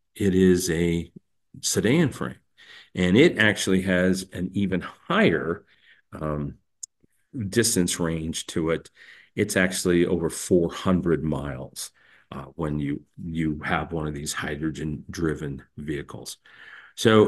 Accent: American